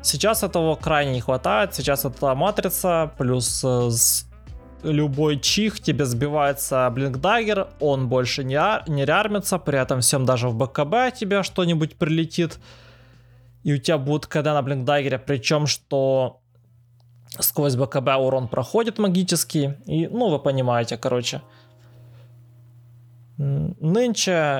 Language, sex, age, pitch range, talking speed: Russian, male, 20-39, 125-155 Hz, 115 wpm